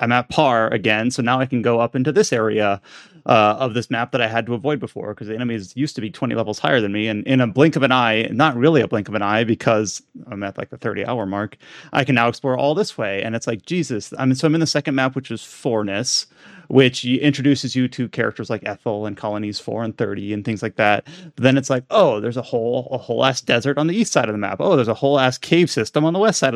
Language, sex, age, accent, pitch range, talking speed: English, male, 30-49, American, 110-140 Hz, 280 wpm